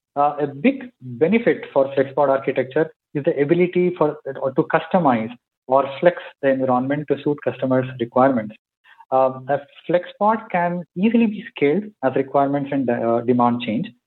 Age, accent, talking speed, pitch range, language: 20-39, Indian, 160 wpm, 135-170 Hz, English